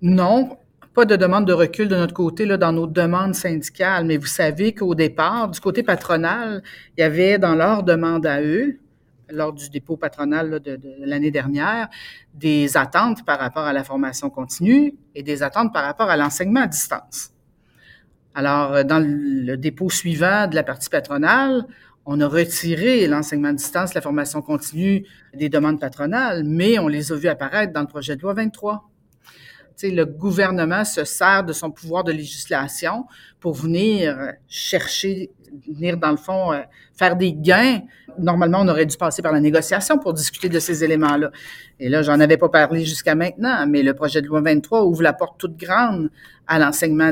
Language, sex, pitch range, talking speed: French, female, 150-195 Hz, 185 wpm